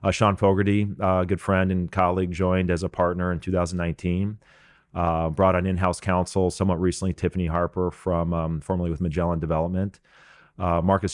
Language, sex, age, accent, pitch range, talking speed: English, male, 30-49, American, 85-95 Hz, 165 wpm